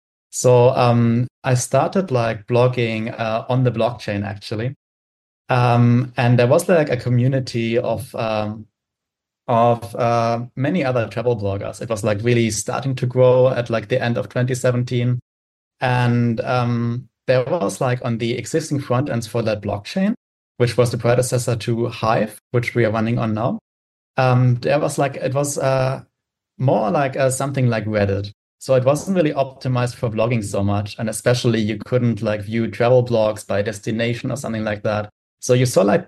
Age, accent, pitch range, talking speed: 30-49, German, 110-125 Hz, 175 wpm